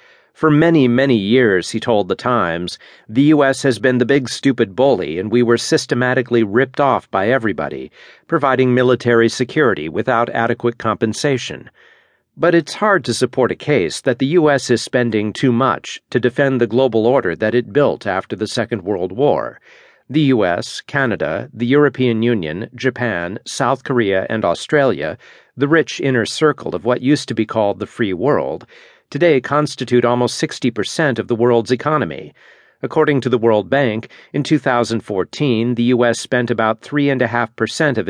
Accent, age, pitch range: American, 50-69, 115-135 Hz